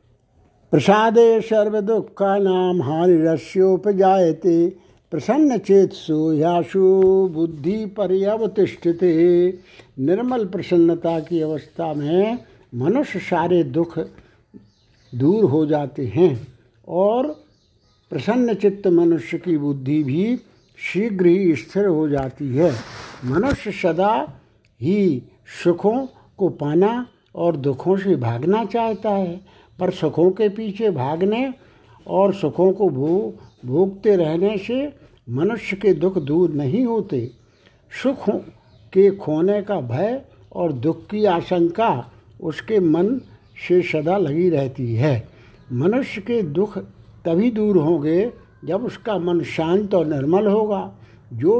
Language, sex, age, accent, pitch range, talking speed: Hindi, male, 60-79, native, 155-205 Hz, 115 wpm